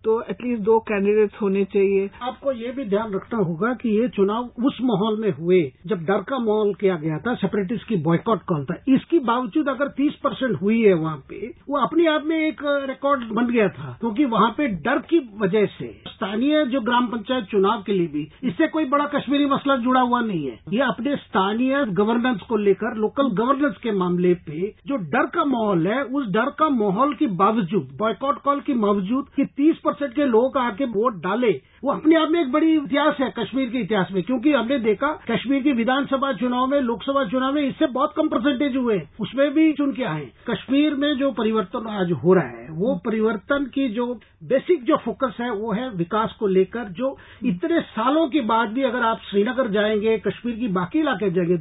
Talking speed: 205 wpm